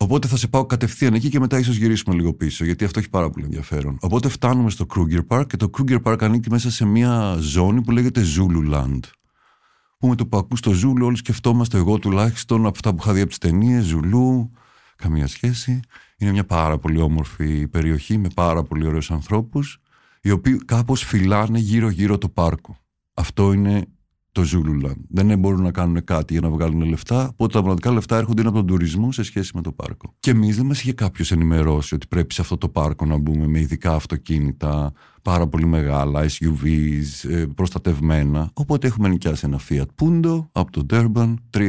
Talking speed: 190 wpm